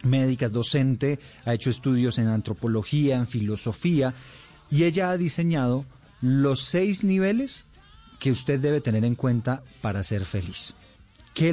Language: Spanish